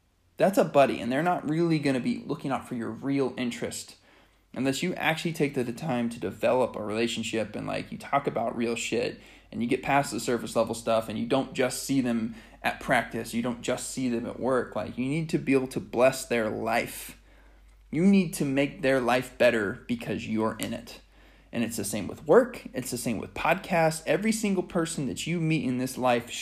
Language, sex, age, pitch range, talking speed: English, male, 20-39, 115-145 Hz, 220 wpm